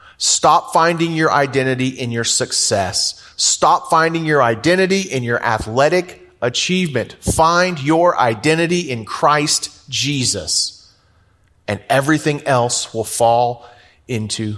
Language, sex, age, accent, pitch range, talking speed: English, male, 30-49, American, 100-145 Hz, 110 wpm